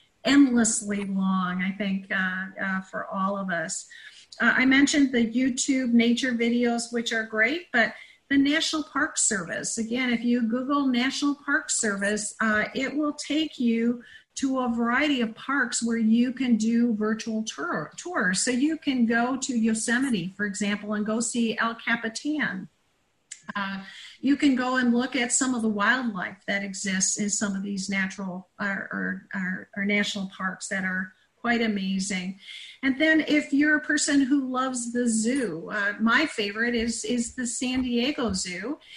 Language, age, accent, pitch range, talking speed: English, 50-69, American, 210-255 Hz, 165 wpm